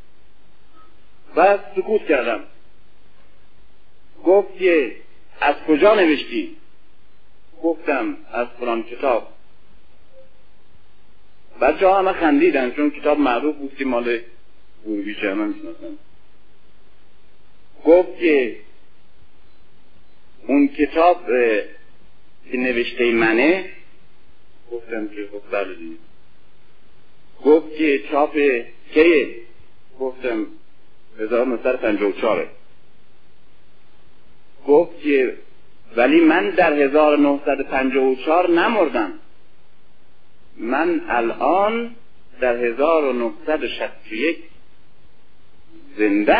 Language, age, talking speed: Persian, 50-69, 70 wpm